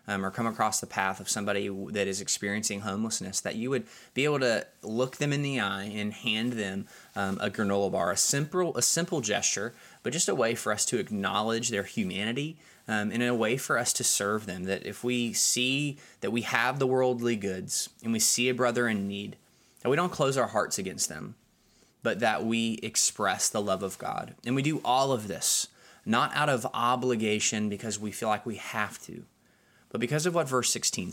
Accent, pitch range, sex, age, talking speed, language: American, 100-125 Hz, male, 20-39, 215 wpm, English